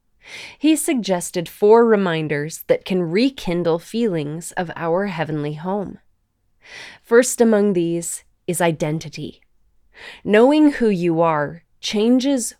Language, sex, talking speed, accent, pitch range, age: English, female, 105 wpm, American, 175-230 Hz, 20-39